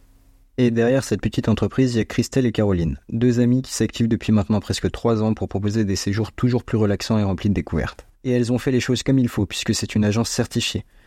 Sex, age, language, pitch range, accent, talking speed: male, 20-39, French, 105-120 Hz, French, 245 wpm